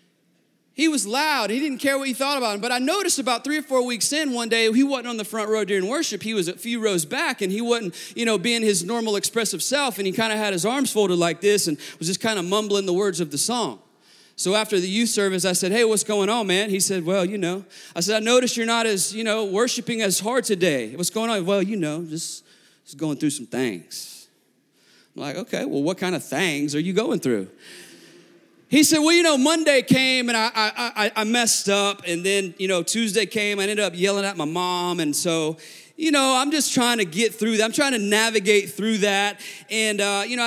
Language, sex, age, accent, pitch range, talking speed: English, male, 30-49, American, 195-245 Hz, 250 wpm